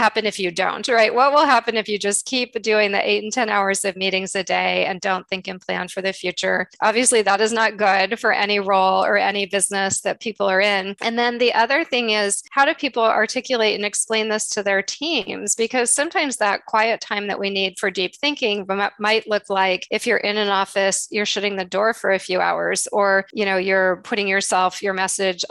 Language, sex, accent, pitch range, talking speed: English, female, American, 190-225 Hz, 225 wpm